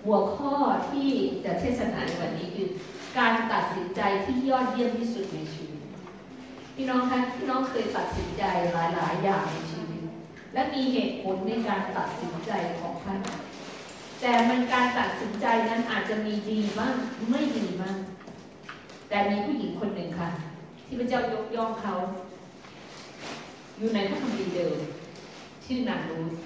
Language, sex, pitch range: English, female, 180-245 Hz